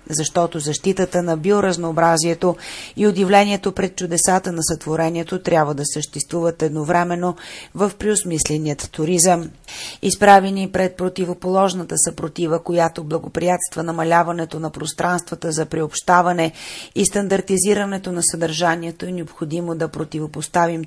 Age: 30-49